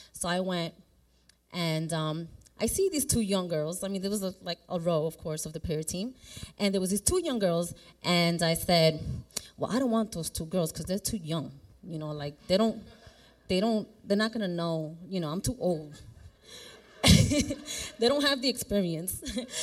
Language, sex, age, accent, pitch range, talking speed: English, female, 20-39, American, 160-205 Hz, 205 wpm